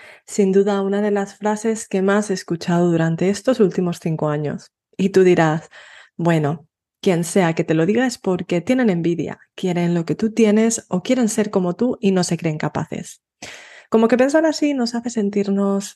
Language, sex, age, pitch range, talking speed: Spanish, female, 20-39, 175-215 Hz, 190 wpm